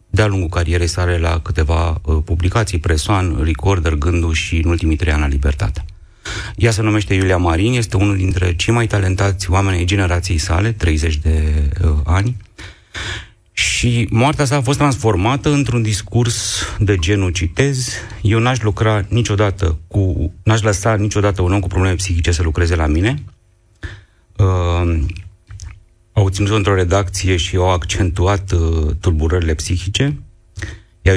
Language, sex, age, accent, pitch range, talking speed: Romanian, male, 30-49, native, 85-105 Hz, 145 wpm